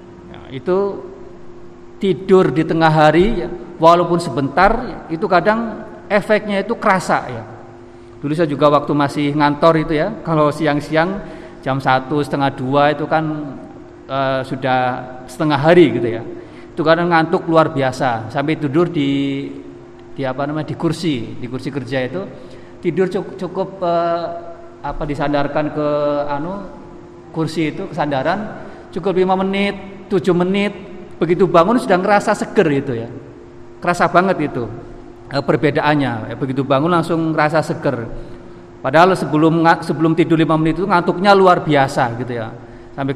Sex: male